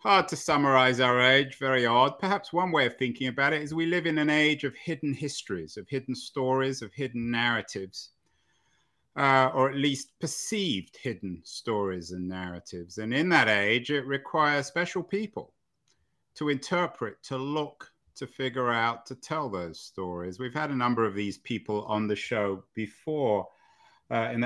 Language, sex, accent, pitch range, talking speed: English, male, British, 110-140 Hz, 170 wpm